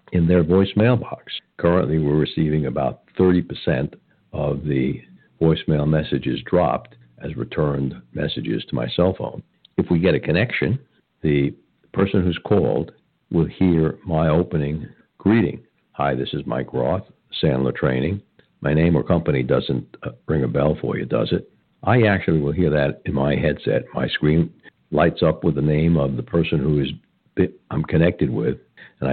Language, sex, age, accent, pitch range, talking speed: English, male, 60-79, American, 70-85 Hz, 160 wpm